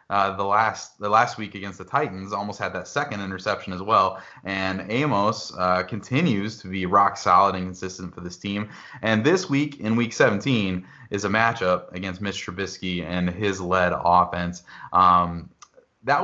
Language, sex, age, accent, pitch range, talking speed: English, male, 20-39, American, 95-110 Hz, 175 wpm